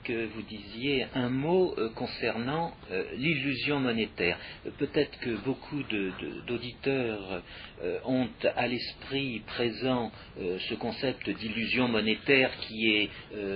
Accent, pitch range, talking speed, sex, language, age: French, 105-130 Hz, 135 wpm, male, French, 50-69